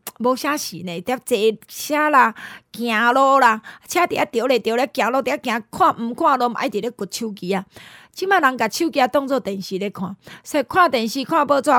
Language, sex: Chinese, female